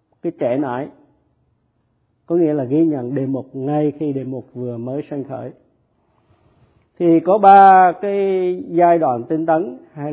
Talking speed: 160 wpm